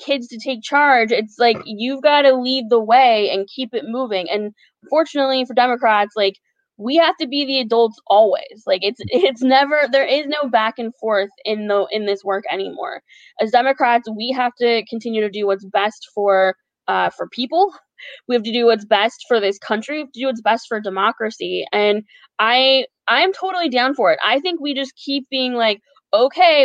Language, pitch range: English, 220-280 Hz